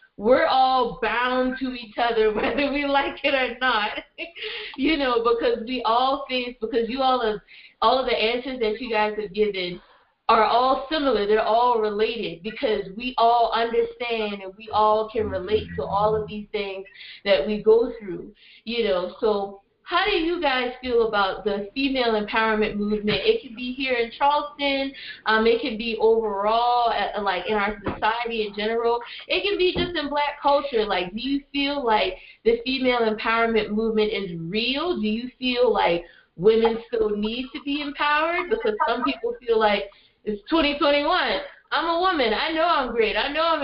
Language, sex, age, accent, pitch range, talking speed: English, female, 20-39, American, 215-270 Hz, 180 wpm